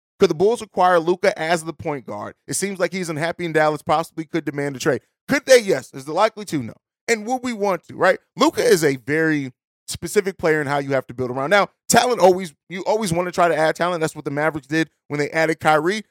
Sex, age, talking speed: male, 30-49, 255 wpm